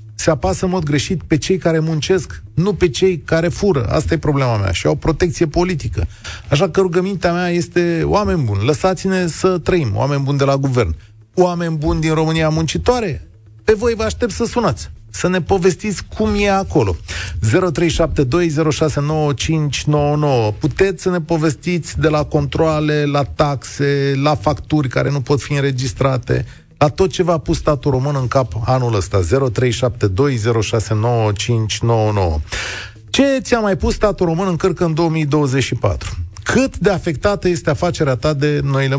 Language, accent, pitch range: Romanian, native, 110-170 Hz